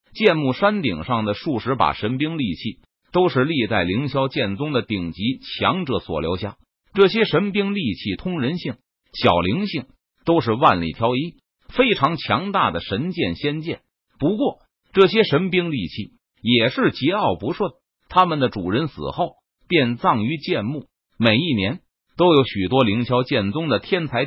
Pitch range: 120-185 Hz